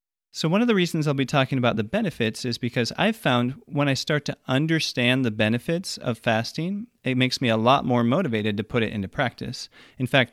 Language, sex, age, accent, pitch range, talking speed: English, male, 30-49, American, 110-145 Hz, 220 wpm